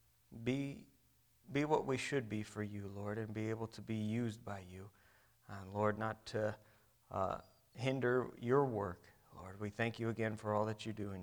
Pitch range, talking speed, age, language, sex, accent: 110-140 Hz, 190 wpm, 40-59, English, male, American